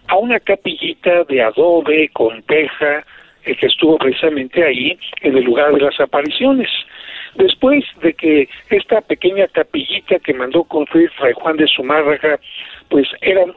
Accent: Mexican